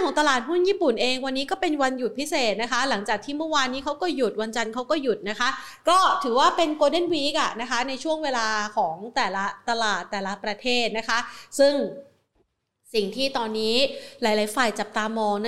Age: 30-49